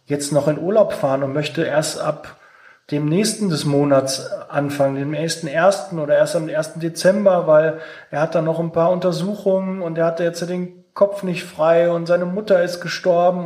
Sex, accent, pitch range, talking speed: male, German, 150-185 Hz, 190 wpm